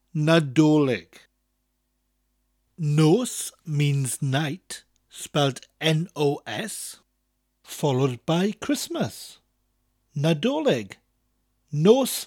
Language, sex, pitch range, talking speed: English, male, 125-185 Hz, 55 wpm